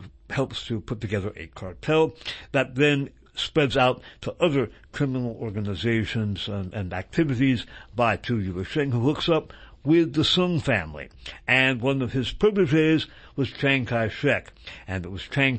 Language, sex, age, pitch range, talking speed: English, male, 60-79, 110-145 Hz, 160 wpm